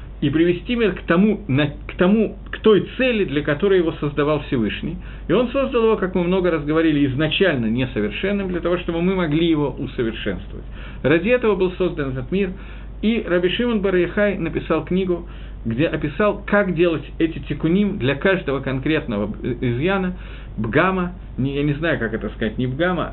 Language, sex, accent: Russian, male, native